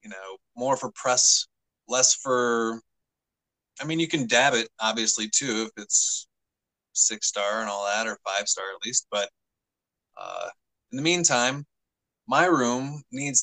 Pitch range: 105-130 Hz